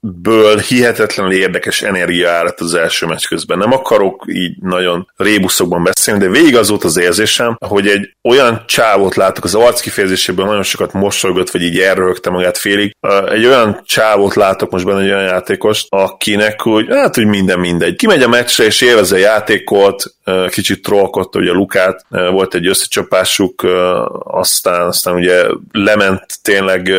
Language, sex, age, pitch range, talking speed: Hungarian, male, 30-49, 90-105 Hz, 155 wpm